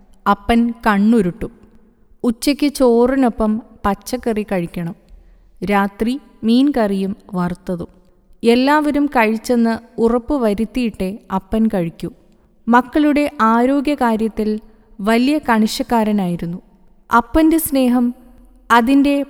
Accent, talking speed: native, 70 wpm